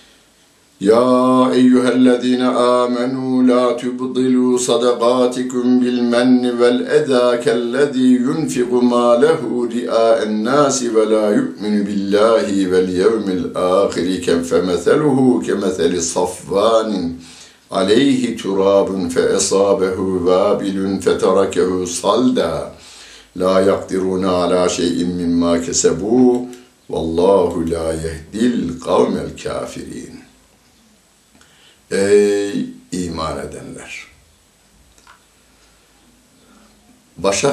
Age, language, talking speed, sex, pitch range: 60-79, Turkish, 70 wpm, male, 95-125 Hz